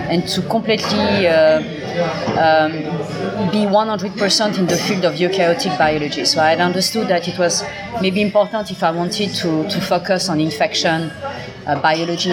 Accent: French